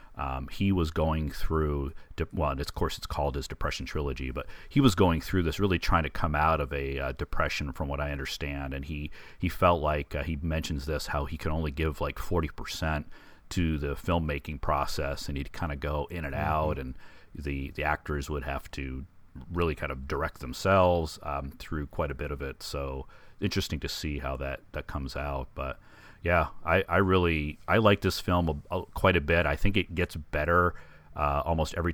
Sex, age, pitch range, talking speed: male, 40-59, 75-95 Hz, 210 wpm